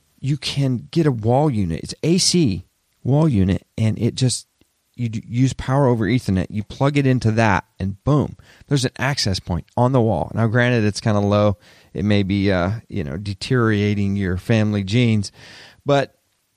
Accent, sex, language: American, male, English